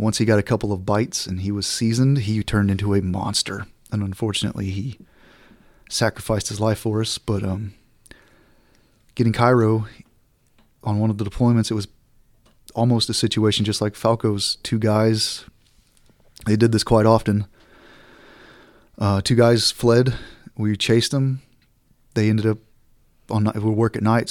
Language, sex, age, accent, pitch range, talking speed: English, male, 30-49, American, 100-110 Hz, 160 wpm